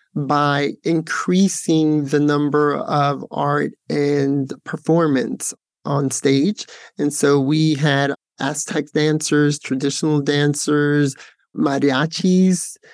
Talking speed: 90 wpm